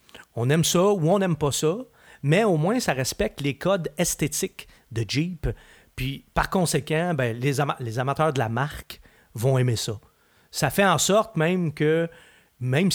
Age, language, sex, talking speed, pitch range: 30-49, French, male, 180 wpm, 115-155 Hz